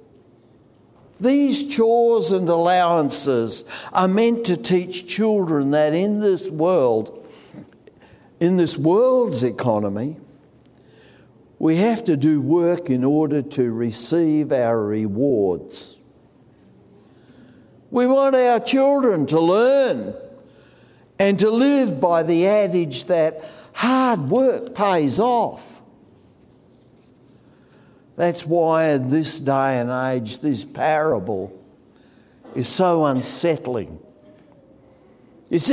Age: 60-79